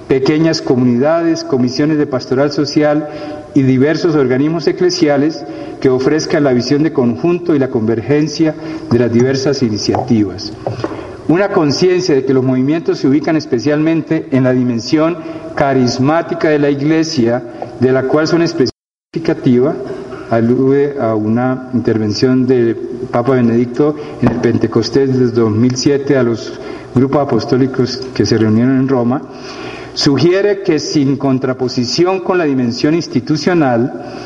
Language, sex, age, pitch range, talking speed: Spanish, male, 50-69, 125-160 Hz, 130 wpm